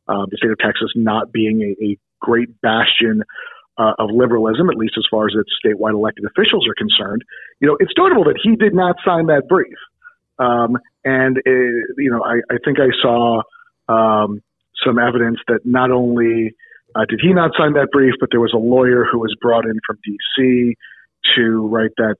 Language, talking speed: English, 195 wpm